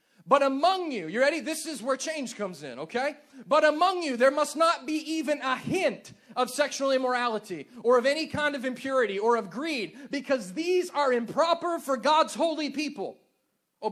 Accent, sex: American, male